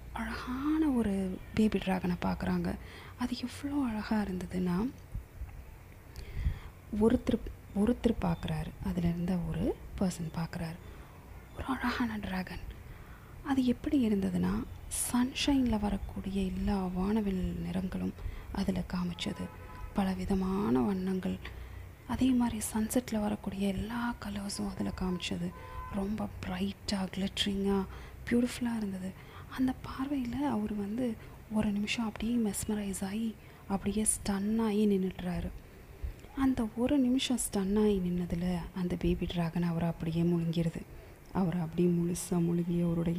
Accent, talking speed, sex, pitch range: native, 100 wpm, female, 175-220 Hz